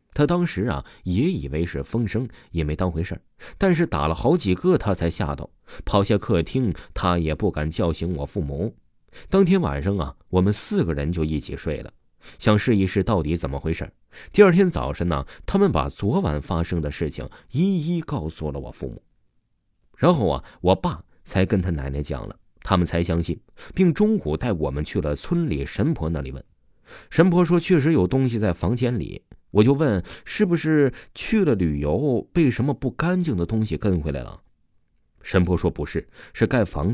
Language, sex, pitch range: Chinese, male, 80-130 Hz